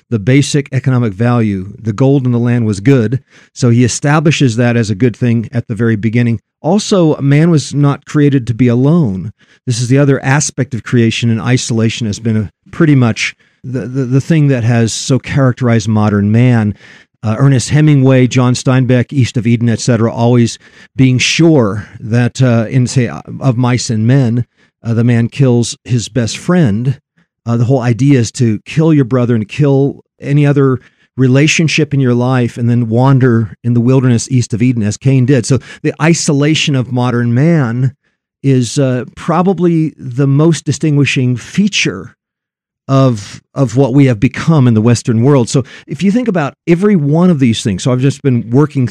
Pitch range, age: 115-140 Hz, 50-69